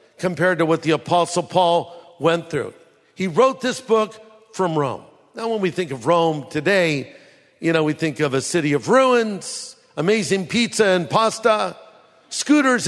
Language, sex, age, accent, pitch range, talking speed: English, male, 50-69, American, 155-200 Hz, 165 wpm